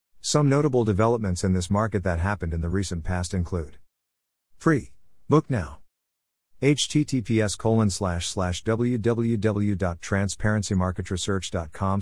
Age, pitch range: 50-69, 85-110 Hz